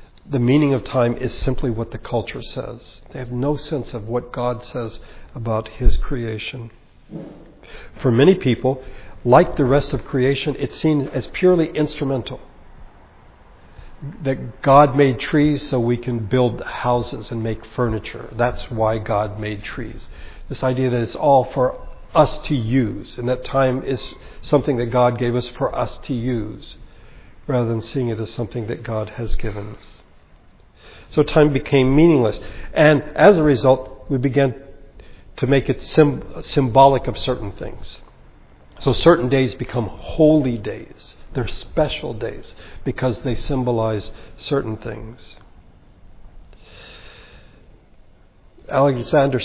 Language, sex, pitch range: English, male, 110-140 Hz